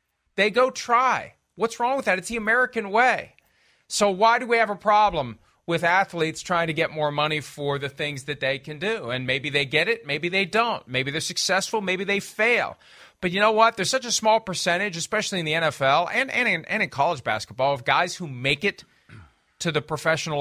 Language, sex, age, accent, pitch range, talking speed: English, male, 40-59, American, 140-200 Hz, 215 wpm